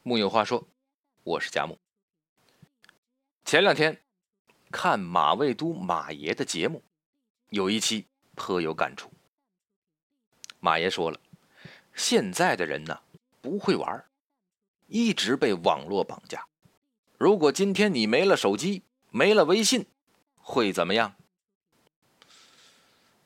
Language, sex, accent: Chinese, male, native